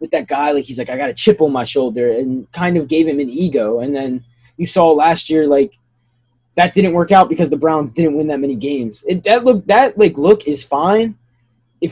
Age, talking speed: 20-39, 240 wpm